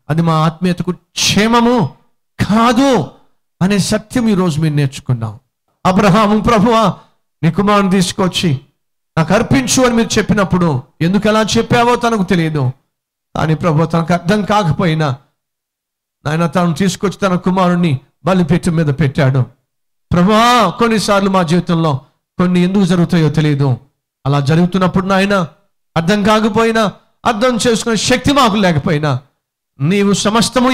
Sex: male